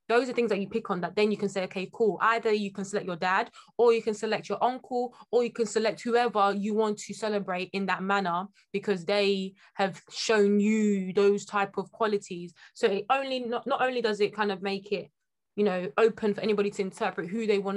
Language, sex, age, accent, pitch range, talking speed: English, female, 20-39, British, 190-220 Hz, 235 wpm